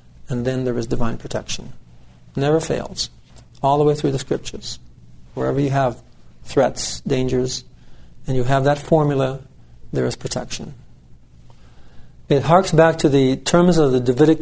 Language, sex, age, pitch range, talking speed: English, male, 50-69, 120-160 Hz, 150 wpm